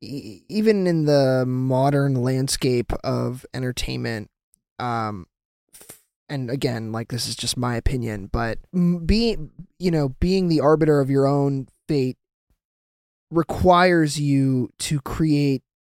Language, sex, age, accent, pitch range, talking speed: English, male, 20-39, American, 115-145 Hz, 125 wpm